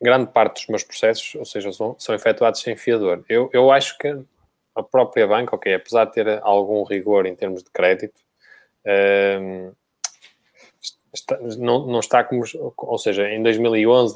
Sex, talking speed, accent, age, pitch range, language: male, 165 wpm, Brazilian, 20-39, 105-125 Hz, Portuguese